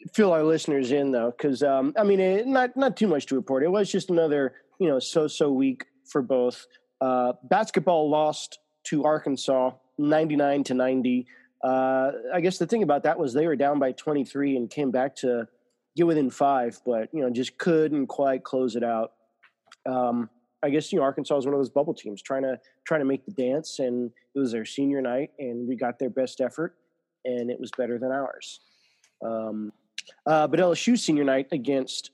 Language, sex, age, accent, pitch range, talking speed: English, male, 30-49, American, 125-155 Hz, 200 wpm